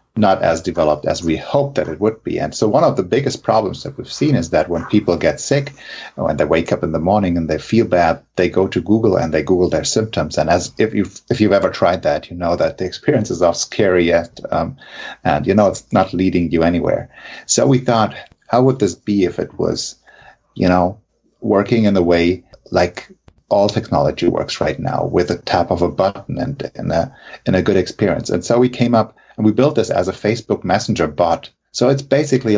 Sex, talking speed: male, 225 wpm